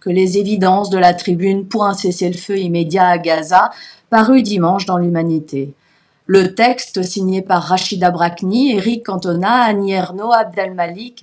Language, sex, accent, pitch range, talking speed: French, female, French, 175-220 Hz, 145 wpm